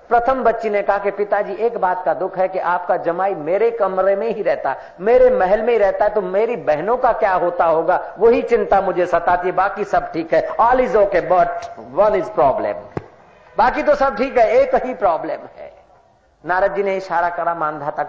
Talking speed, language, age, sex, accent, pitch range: 210 wpm, Hindi, 50-69, male, native, 180-235 Hz